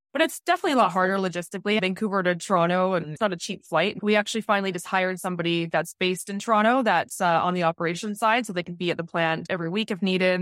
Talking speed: 250 wpm